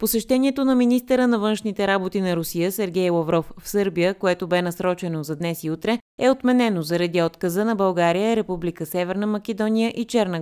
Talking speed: 175 wpm